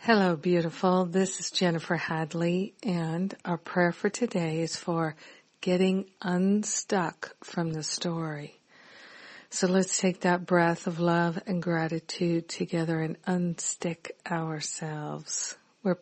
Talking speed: 120 wpm